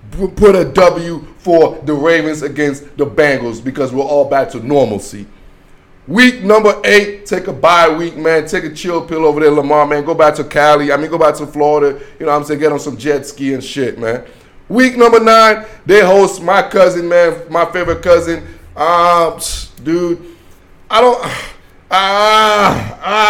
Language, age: English, 20-39